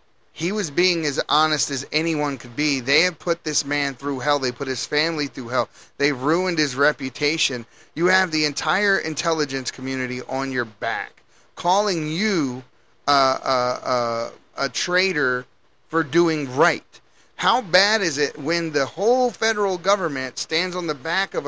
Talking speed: 165 wpm